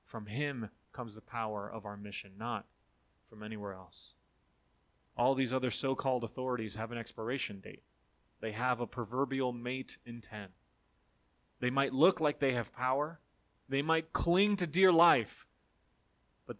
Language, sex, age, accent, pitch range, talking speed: English, male, 30-49, American, 100-140 Hz, 150 wpm